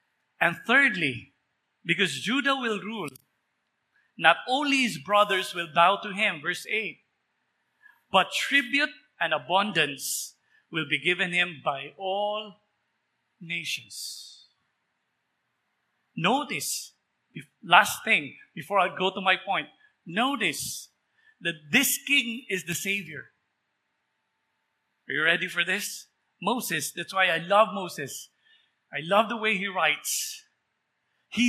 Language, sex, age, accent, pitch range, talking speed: English, male, 50-69, Filipino, 175-250 Hz, 115 wpm